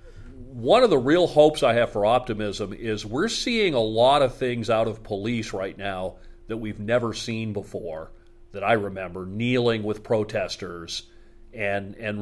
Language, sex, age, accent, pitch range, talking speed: English, male, 40-59, American, 110-140 Hz, 165 wpm